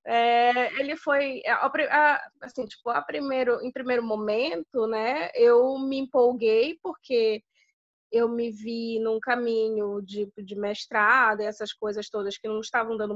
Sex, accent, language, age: female, Brazilian, Portuguese, 20-39